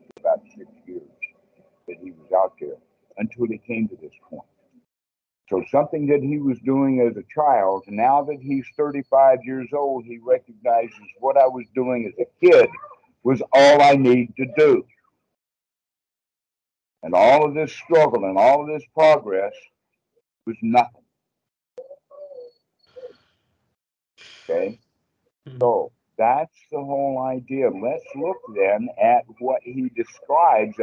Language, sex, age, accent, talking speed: English, male, 60-79, American, 135 wpm